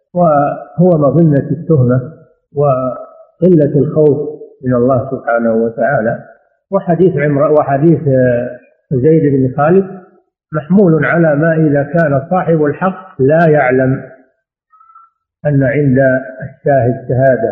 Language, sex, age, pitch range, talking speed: Arabic, male, 50-69, 135-170 Hz, 95 wpm